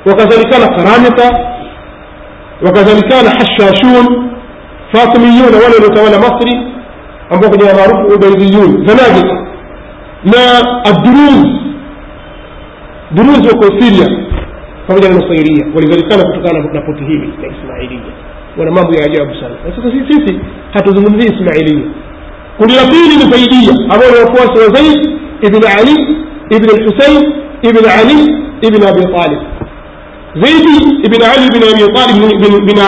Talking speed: 100 wpm